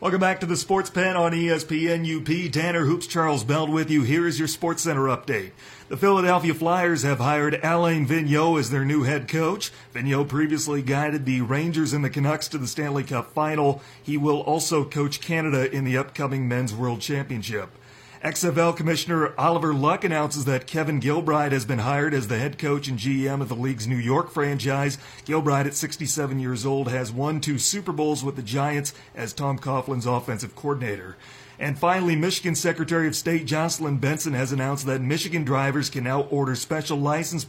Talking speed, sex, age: 185 wpm, male, 40-59